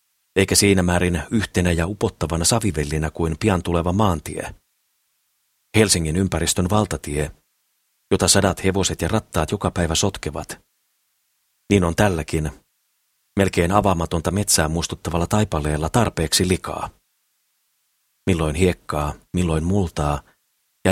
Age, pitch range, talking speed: 40-59, 80-100 Hz, 105 wpm